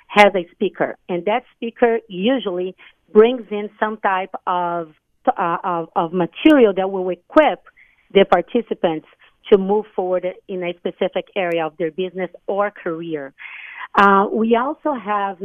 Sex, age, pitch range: female, 40-59, 180-220 Hz